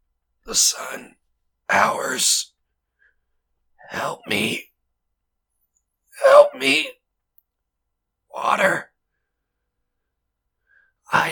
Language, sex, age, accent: English, male, 40-59, American